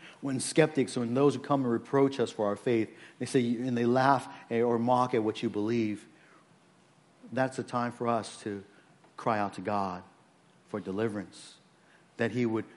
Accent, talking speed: American, 180 wpm